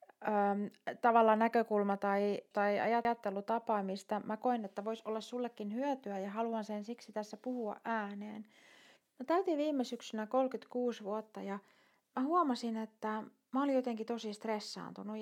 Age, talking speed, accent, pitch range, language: 30-49, 130 wpm, native, 205-245 Hz, Finnish